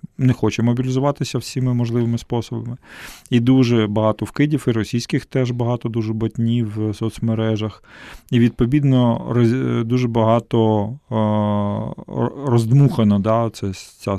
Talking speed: 105 wpm